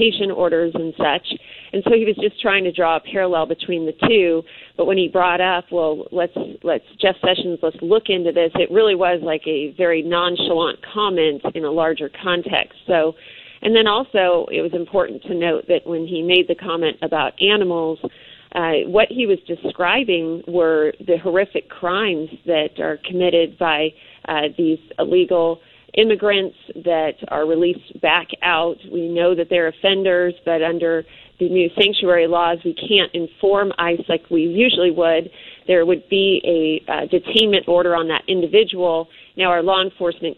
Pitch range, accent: 165-190 Hz, American